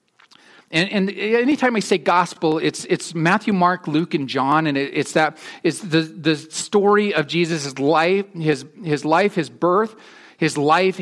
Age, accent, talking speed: 40-59, American, 170 wpm